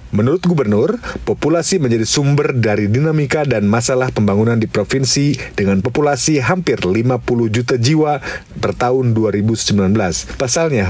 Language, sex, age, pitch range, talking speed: Indonesian, male, 40-59, 110-145 Hz, 120 wpm